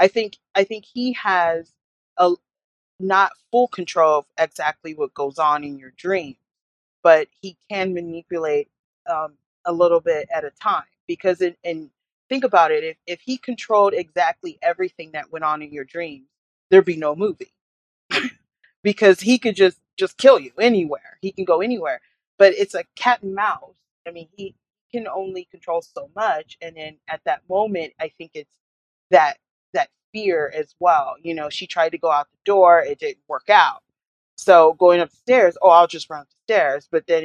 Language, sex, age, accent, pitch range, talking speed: English, female, 30-49, American, 160-210 Hz, 180 wpm